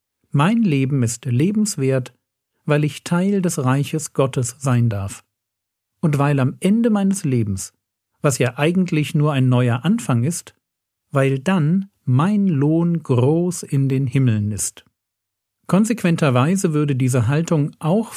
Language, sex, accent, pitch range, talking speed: German, male, German, 115-165 Hz, 130 wpm